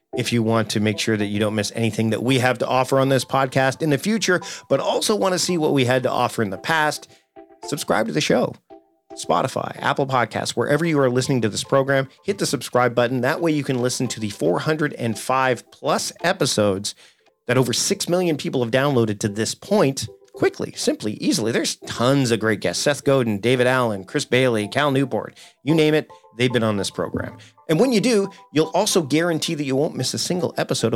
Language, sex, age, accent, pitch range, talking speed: English, male, 40-59, American, 115-150 Hz, 215 wpm